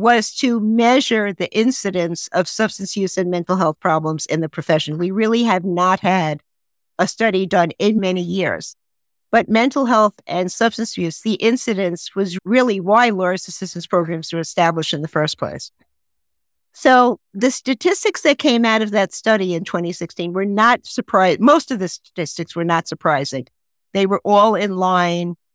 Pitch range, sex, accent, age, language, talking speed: 170-210 Hz, female, American, 50-69, English, 170 wpm